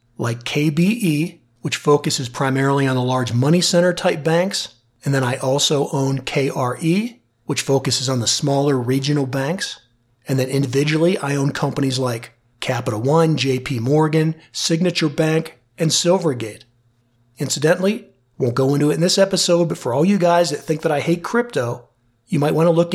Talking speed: 165 wpm